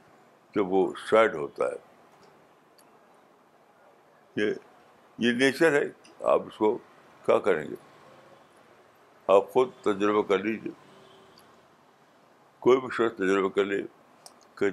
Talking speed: 100 wpm